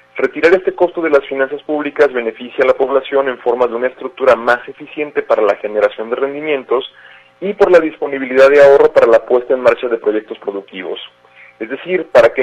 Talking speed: 200 wpm